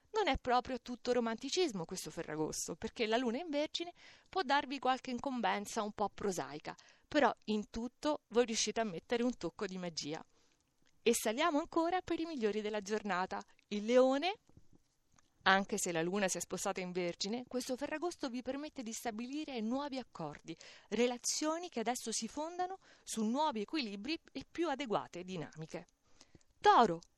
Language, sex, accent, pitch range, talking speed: Italian, female, native, 190-260 Hz, 155 wpm